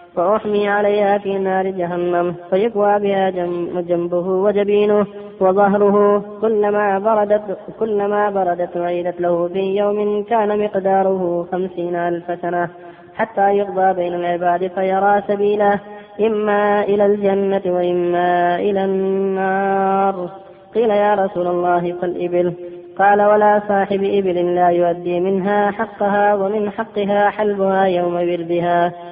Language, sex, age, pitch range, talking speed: Arabic, female, 20-39, 175-205 Hz, 110 wpm